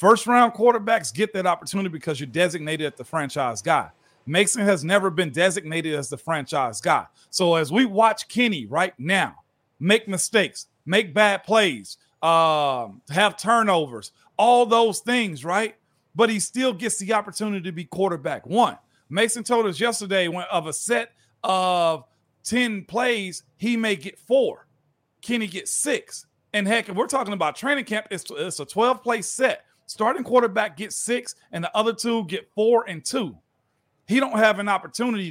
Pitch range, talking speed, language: 175-230 Hz, 165 wpm, English